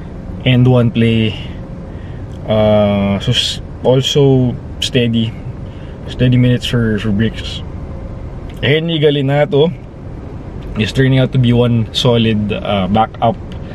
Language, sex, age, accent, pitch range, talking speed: English, male, 20-39, Filipino, 105-125 Hz, 95 wpm